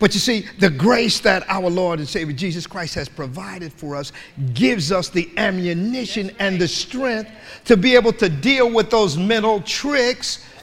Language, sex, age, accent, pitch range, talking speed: English, male, 50-69, American, 170-250 Hz, 180 wpm